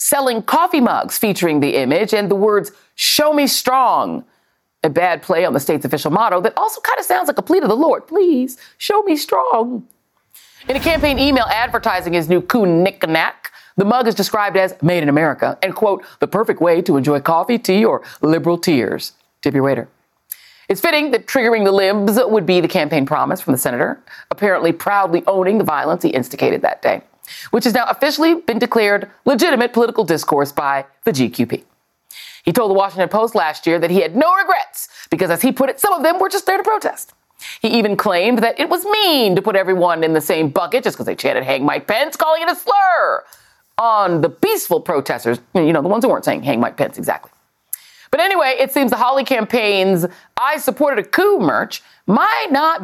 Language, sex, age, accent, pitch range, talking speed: English, female, 40-59, American, 190-300 Hz, 205 wpm